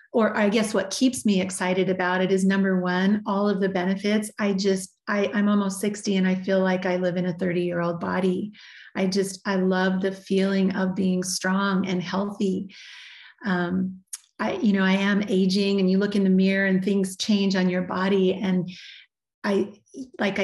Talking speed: 195 wpm